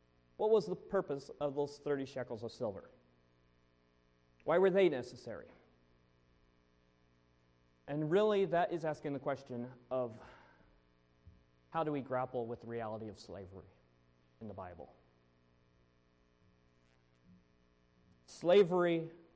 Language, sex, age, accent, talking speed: English, male, 40-59, American, 110 wpm